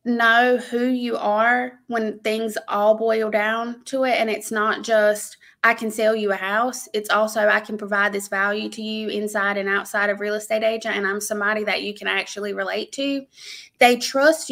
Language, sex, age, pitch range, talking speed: English, female, 20-39, 205-235 Hz, 200 wpm